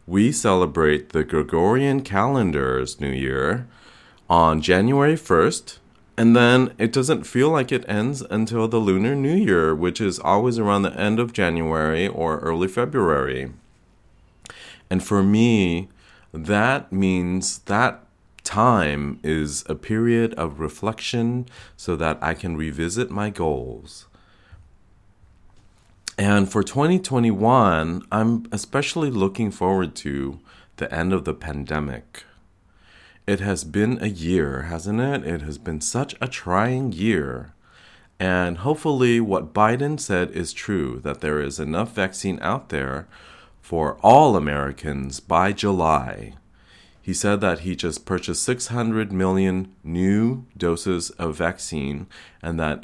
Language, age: English, 30-49